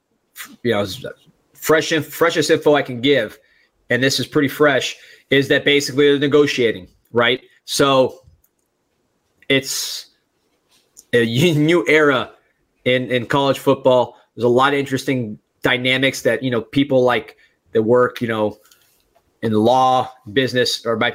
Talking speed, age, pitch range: 135 wpm, 30-49, 120-145 Hz